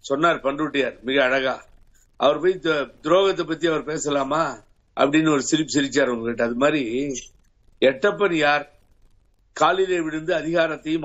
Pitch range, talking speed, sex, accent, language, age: 150-205 Hz, 120 wpm, male, native, Tamil, 50-69